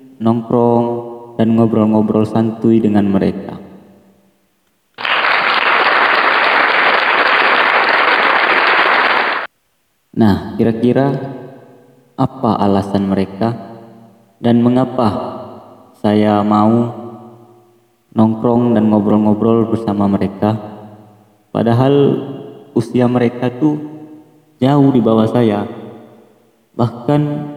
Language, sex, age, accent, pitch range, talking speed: Indonesian, male, 20-39, native, 110-120 Hz, 65 wpm